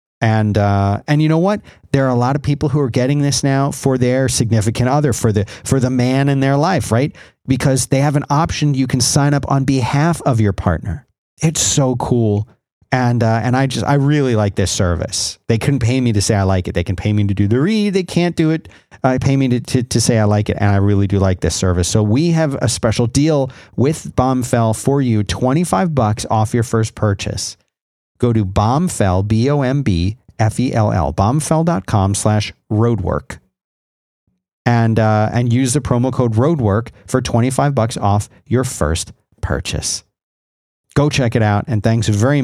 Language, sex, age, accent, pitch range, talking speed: English, male, 40-59, American, 100-135 Hz, 200 wpm